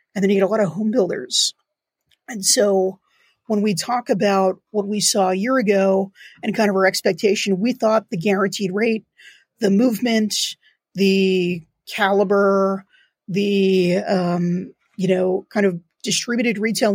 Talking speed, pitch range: 150 wpm, 195-220 Hz